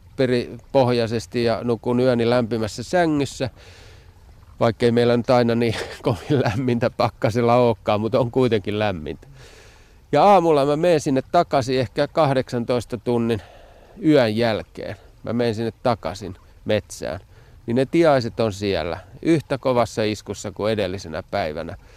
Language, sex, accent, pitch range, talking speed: Finnish, male, native, 95-125 Hz, 125 wpm